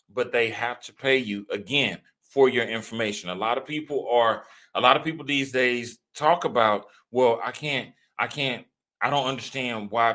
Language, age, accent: English, 30-49, American